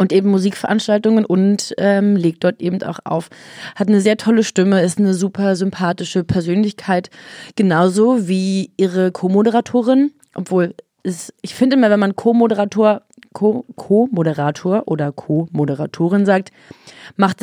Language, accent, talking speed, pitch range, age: German, German, 125 wpm, 185-225 Hz, 30-49